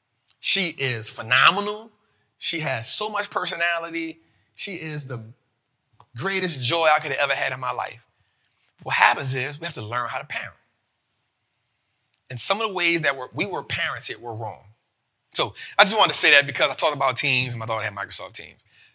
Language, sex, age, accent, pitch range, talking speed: English, male, 30-49, American, 120-185 Hz, 195 wpm